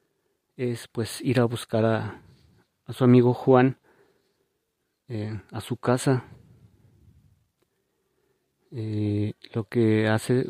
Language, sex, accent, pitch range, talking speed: Spanish, male, Mexican, 110-125 Hz, 105 wpm